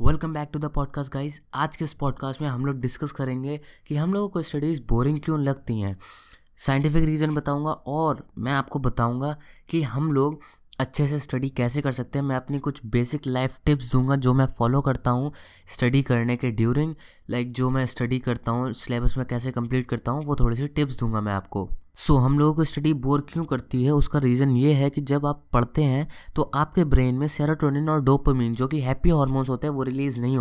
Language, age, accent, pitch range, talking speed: Hindi, 20-39, native, 125-150 Hz, 220 wpm